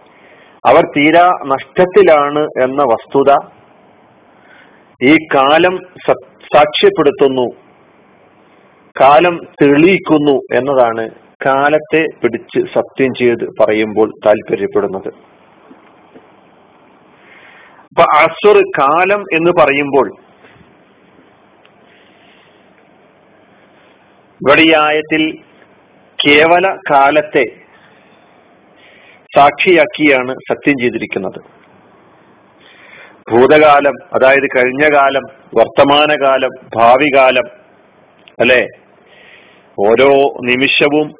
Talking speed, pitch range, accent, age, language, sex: 50 wpm, 135-160 Hz, native, 40-59, Malayalam, male